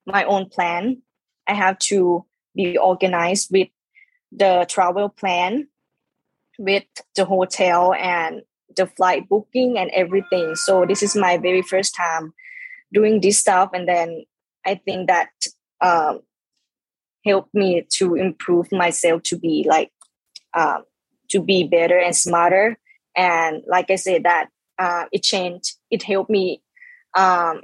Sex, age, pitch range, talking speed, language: female, 20-39, 175-205 Hz, 135 wpm, English